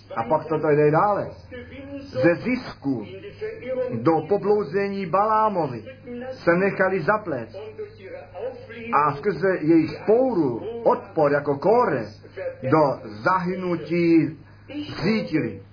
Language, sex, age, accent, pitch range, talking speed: Czech, male, 50-69, native, 155-205 Hz, 90 wpm